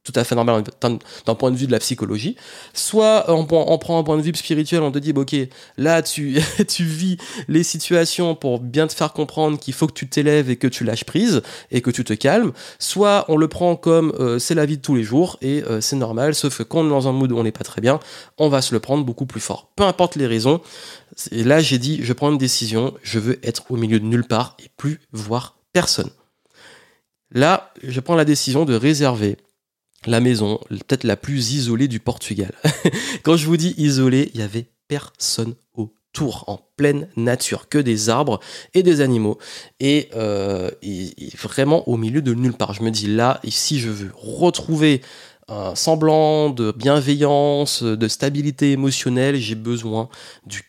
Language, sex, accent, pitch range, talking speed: French, male, French, 115-155 Hz, 210 wpm